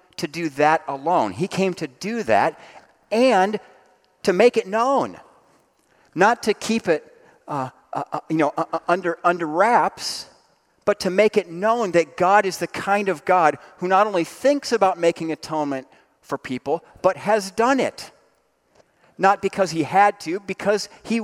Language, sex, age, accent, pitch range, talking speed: English, male, 40-59, American, 150-200 Hz, 165 wpm